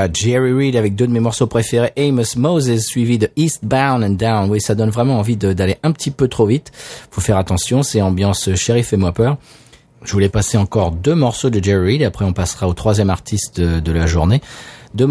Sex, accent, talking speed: male, French, 220 wpm